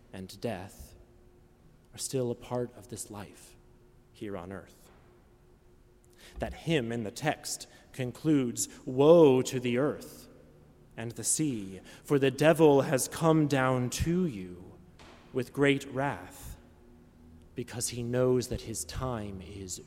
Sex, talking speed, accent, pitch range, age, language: male, 130 wpm, American, 95-140 Hz, 30-49, English